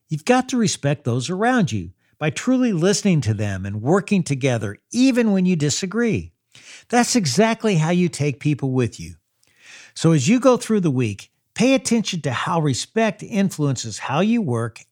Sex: male